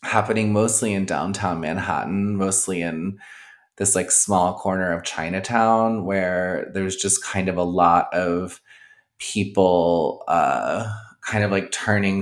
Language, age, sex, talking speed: English, 20-39, male, 135 wpm